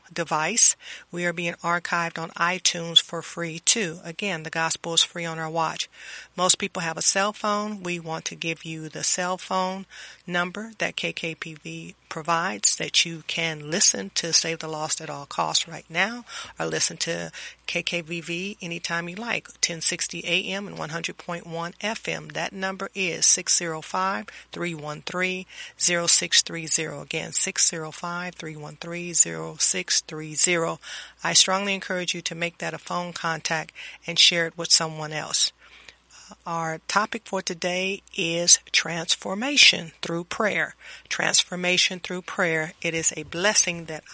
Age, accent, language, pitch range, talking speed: 40-59, American, English, 160-185 Hz, 135 wpm